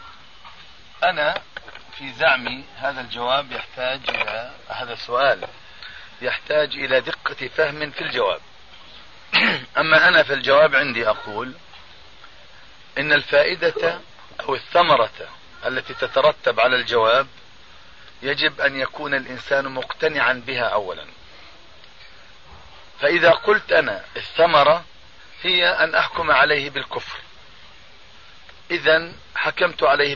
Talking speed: 95 wpm